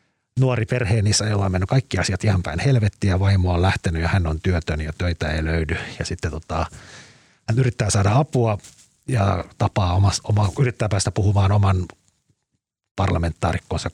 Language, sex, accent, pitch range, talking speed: Finnish, male, native, 85-105 Hz, 165 wpm